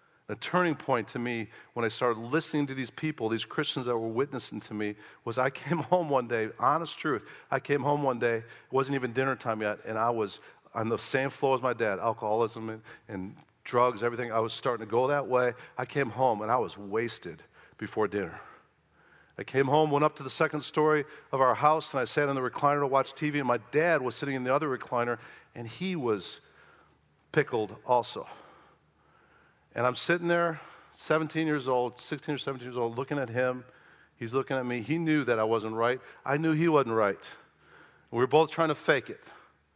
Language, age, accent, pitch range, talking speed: English, 50-69, American, 115-145 Hz, 215 wpm